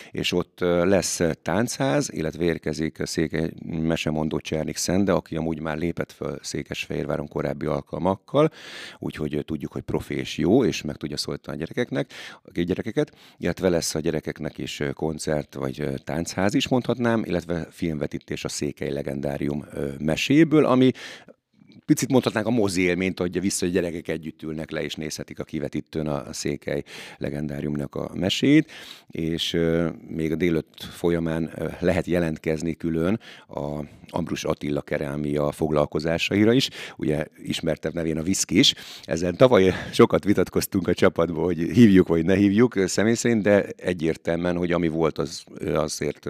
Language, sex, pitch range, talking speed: Hungarian, male, 75-90 Hz, 145 wpm